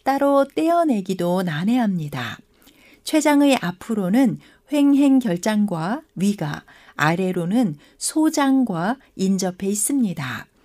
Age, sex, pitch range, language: 60-79, female, 195-260 Hz, Korean